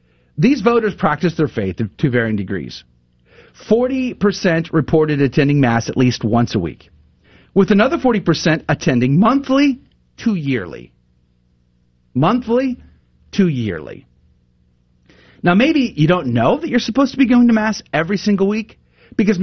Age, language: 40-59, English